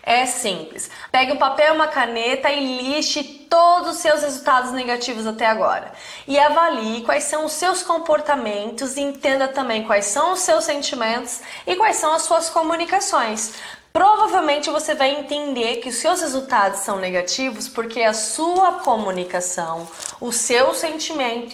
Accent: Brazilian